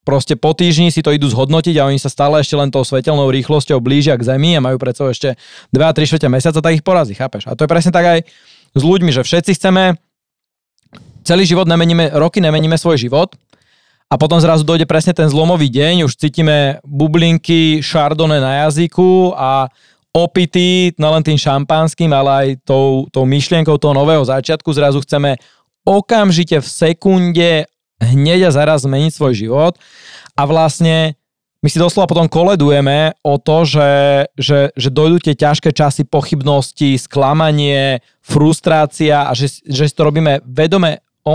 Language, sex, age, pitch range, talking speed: Slovak, male, 20-39, 140-165 Hz, 165 wpm